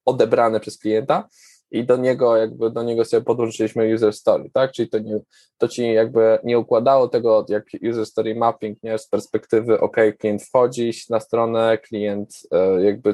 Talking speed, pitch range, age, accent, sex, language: 180 wpm, 110-120 Hz, 20-39, native, male, Polish